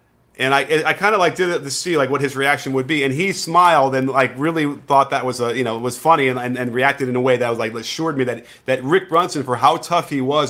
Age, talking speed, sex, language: 30-49, 290 wpm, male, English